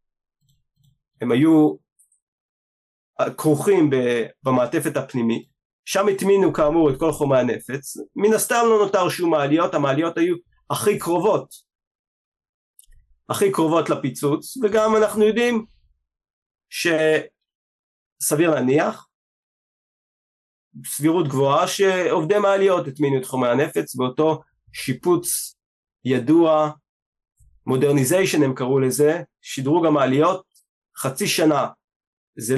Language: Hebrew